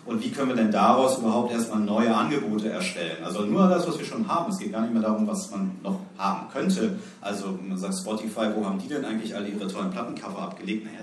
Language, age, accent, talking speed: English, 40-59, German, 245 wpm